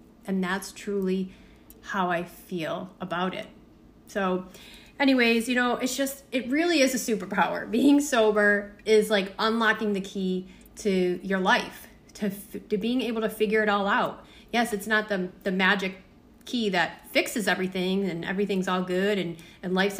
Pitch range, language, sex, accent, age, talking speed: 190-225 Hz, English, female, American, 30-49, 165 wpm